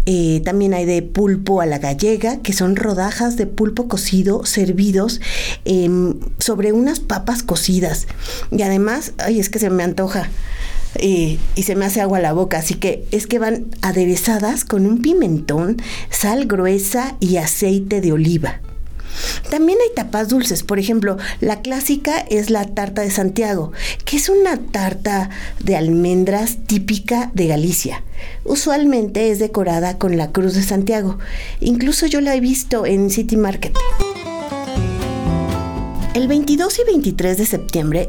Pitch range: 175-225 Hz